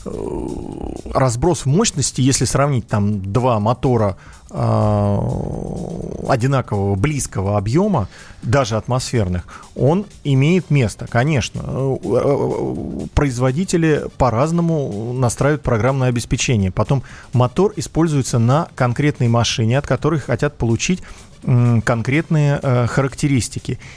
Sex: male